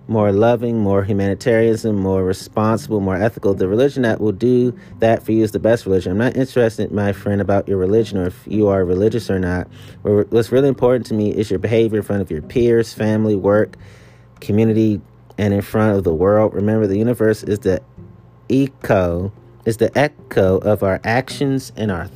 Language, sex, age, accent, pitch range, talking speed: English, male, 30-49, American, 105-125 Hz, 190 wpm